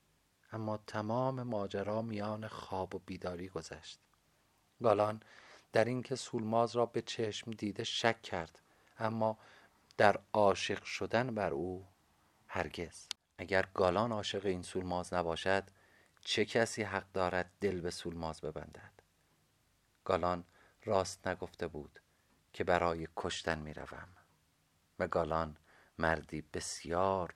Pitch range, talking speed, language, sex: 90-110 Hz, 110 wpm, Persian, male